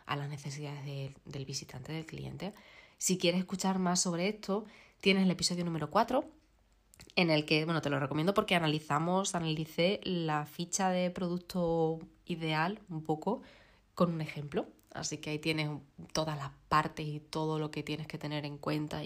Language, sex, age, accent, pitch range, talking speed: Spanish, female, 20-39, Spanish, 150-185 Hz, 175 wpm